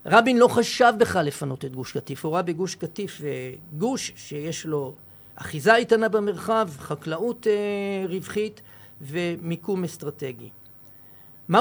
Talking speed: 130 wpm